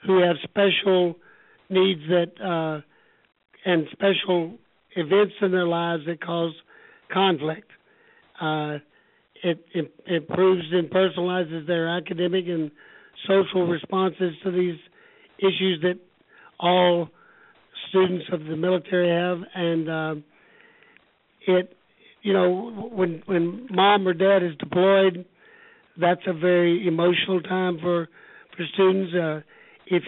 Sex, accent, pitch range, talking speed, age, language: male, American, 170-190 Hz, 120 wpm, 60-79, English